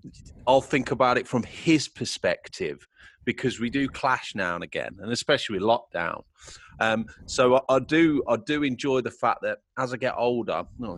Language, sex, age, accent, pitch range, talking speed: English, male, 30-49, British, 110-135 Hz, 185 wpm